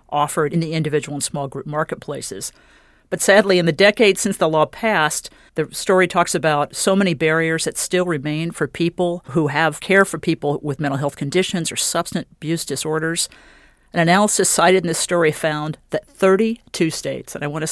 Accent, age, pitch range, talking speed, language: American, 50-69, 145-185 Hz, 185 wpm, English